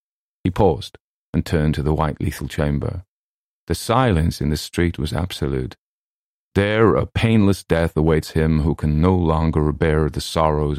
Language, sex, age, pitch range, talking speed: English, male, 40-59, 80-95 Hz, 160 wpm